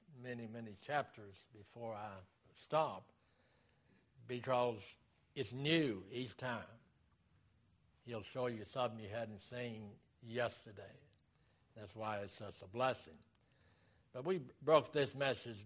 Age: 60-79